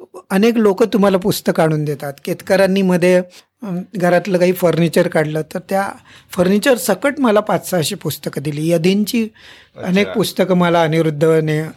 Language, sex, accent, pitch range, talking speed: Marathi, male, native, 160-200 Hz, 135 wpm